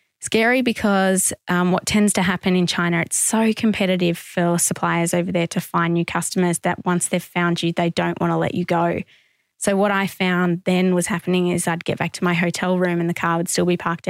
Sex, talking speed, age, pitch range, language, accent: female, 230 wpm, 20-39, 175-190 Hz, English, Australian